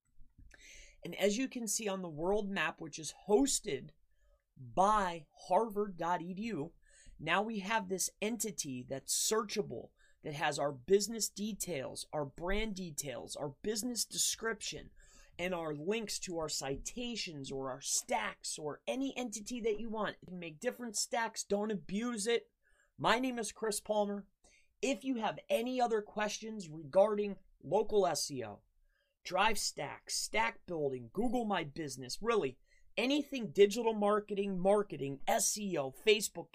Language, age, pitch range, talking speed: English, 30-49, 150-220 Hz, 135 wpm